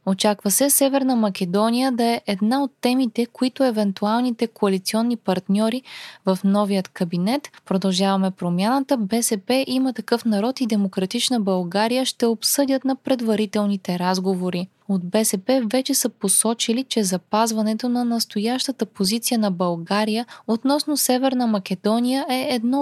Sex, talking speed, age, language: female, 125 wpm, 20-39, Bulgarian